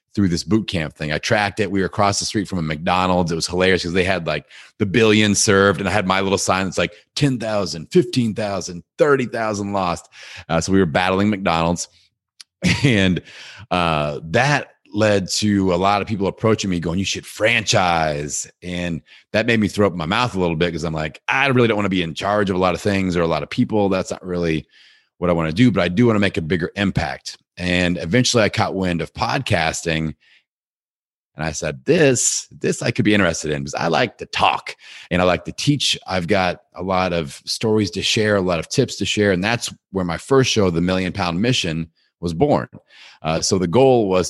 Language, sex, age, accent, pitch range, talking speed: English, male, 30-49, American, 85-105 Hz, 225 wpm